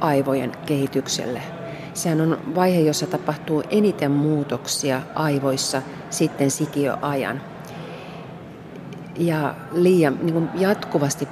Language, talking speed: Finnish, 85 wpm